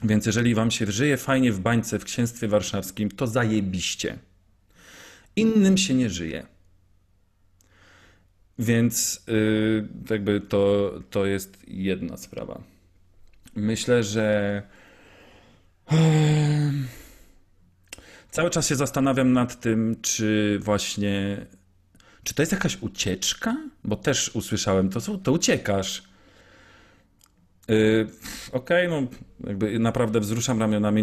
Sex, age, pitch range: male, 40-59, 95-125 Hz